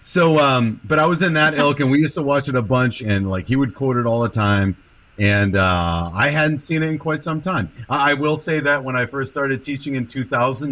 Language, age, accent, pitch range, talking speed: English, 40-59, American, 100-140 Hz, 265 wpm